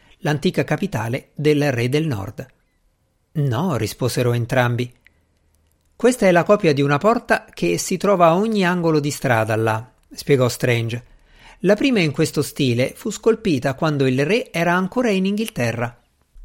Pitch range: 120-175 Hz